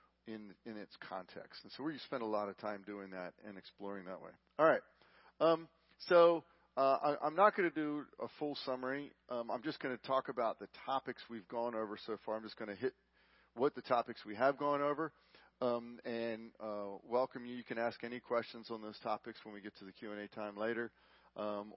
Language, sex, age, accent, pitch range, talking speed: English, male, 40-59, American, 110-140 Hz, 220 wpm